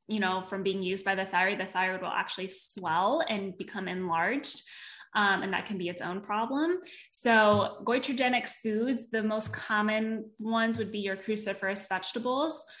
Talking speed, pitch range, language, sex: 170 wpm, 190-225 Hz, English, female